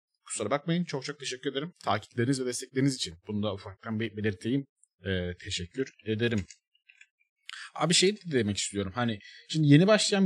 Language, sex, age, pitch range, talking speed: Turkish, male, 30-49, 105-150 Hz, 145 wpm